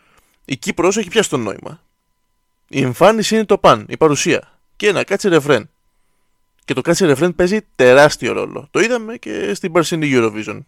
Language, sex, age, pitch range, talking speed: Greek, male, 20-39, 125-170 Hz, 170 wpm